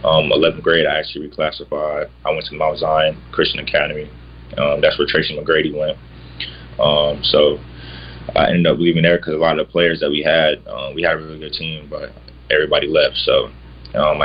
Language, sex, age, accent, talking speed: English, male, 20-39, American, 200 wpm